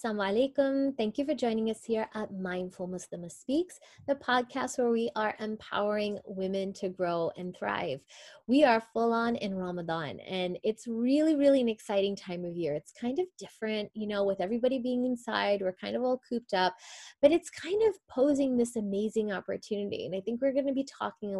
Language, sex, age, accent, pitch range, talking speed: English, female, 20-39, American, 200-255 Hz, 195 wpm